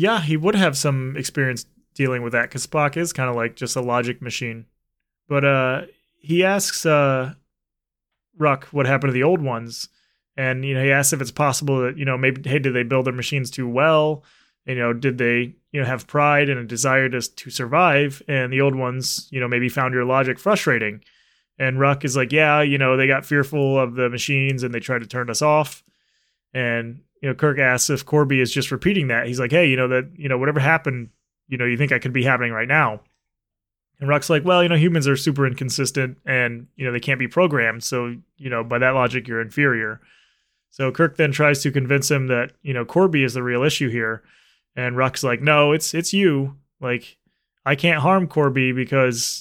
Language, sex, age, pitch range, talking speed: English, male, 20-39, 125-145 Hz, 220 wpm